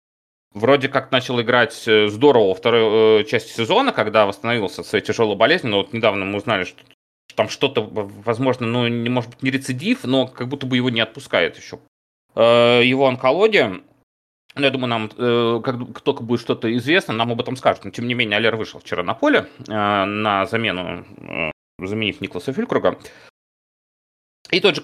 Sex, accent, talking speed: male, native, 165 wpm